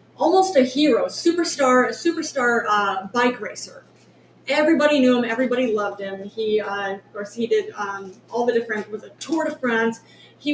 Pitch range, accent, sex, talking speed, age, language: 215-275 Hz, American, female, 160 wpm, 30-49, English